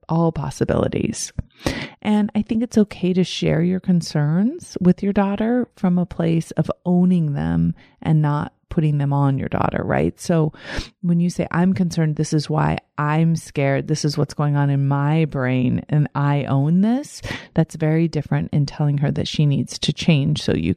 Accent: American